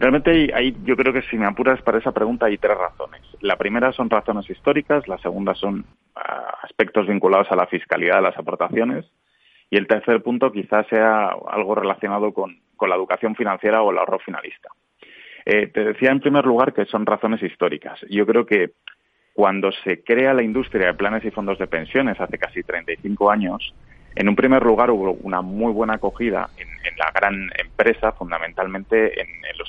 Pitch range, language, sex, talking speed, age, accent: 95-115 Hz, Spanish, male, 185 wpm, 30-49, Spanish